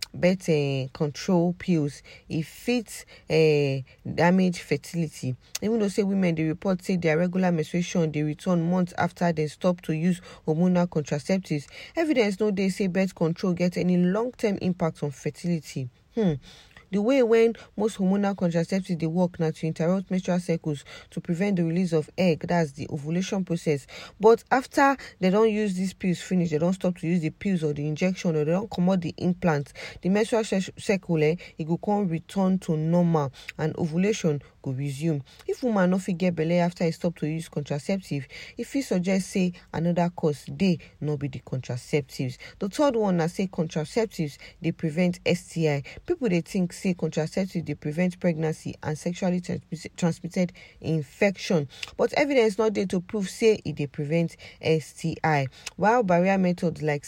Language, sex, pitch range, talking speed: English, female, 155-190 Hz, 170 wpm